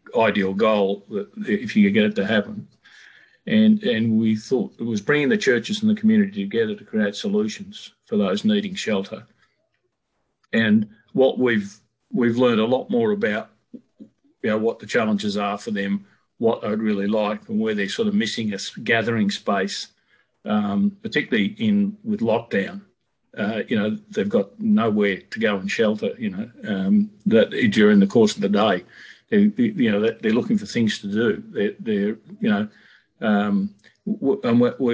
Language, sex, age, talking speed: English, male, 50-69, 160 wpm